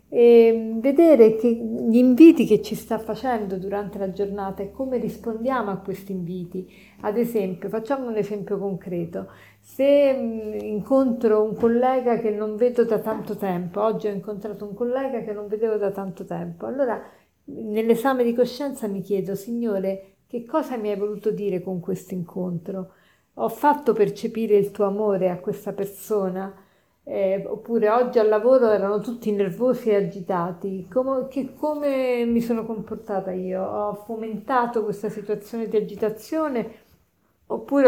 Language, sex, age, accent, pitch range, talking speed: Italian, female, 50-69, native, 200-235 Hz, 145 wpm